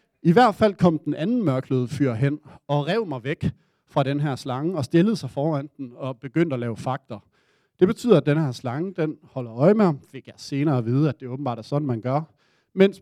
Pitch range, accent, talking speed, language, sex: 130-170 Hz, native, 230 wpm, Danish, male